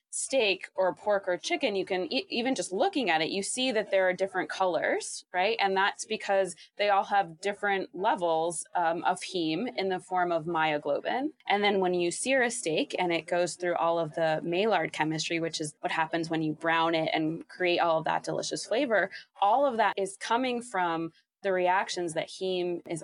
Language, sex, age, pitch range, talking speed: English, female, 20-39, 170-200 Hz, 205 wpm